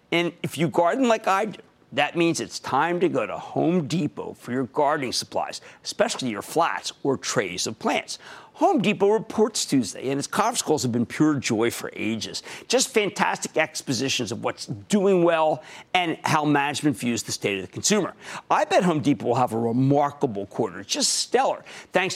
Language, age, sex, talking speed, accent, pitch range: English, 50-69, male, 185 wpm, American, 135-200 Hz